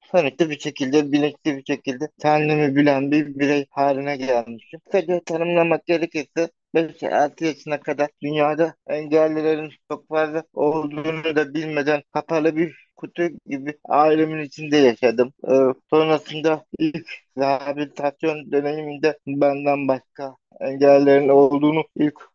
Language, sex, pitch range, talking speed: Turkish, male, 140-165 Hz, 115 wpm